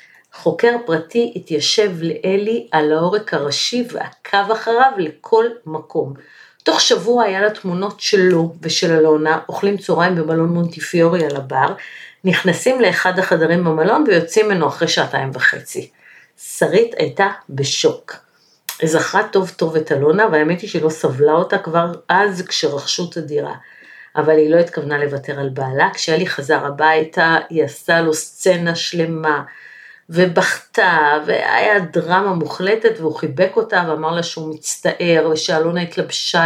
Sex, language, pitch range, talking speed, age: female, Hebrew, 160-205 Hz, 130 wpm, 50-69